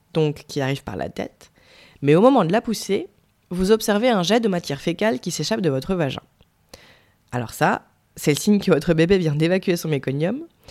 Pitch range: 150-205 Hz